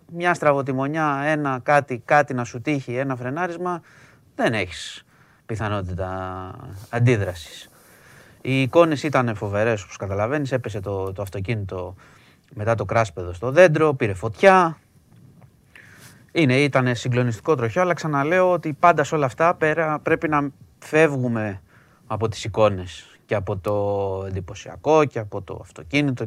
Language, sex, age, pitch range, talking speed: Greek, male, 30-49, 100-140 Hz, 130 wpm